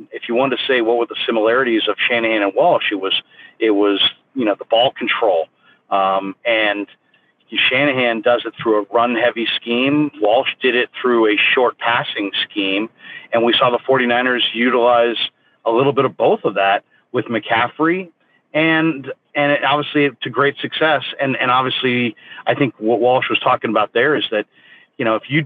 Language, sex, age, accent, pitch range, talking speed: English, male, 40-59, American, 115-140 Hz, 185 wpm